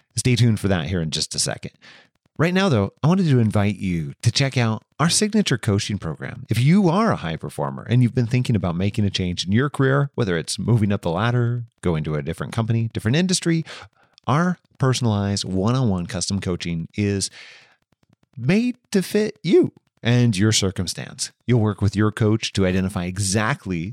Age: 30-49